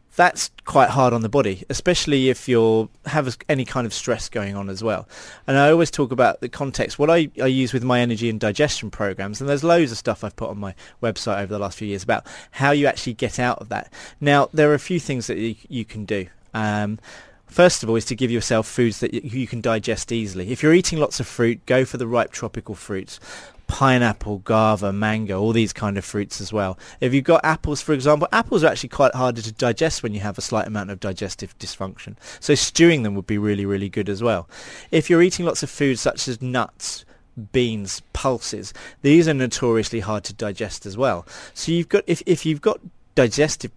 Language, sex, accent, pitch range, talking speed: English, male, British, 105-140 Hz, 225 wpm